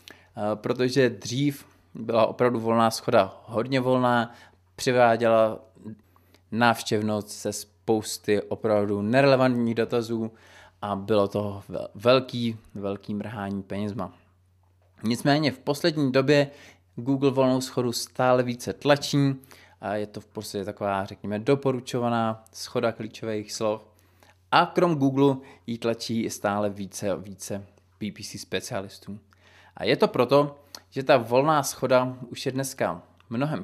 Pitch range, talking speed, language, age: 100-125 Hz, 120 wpm, Czech, 20-39